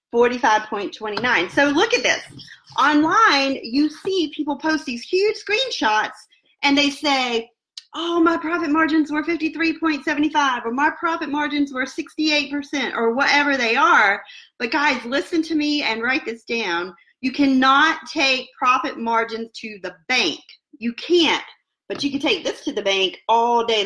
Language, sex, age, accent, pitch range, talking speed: English, female, 40-59, American, 235-315 Hz, 170 wpm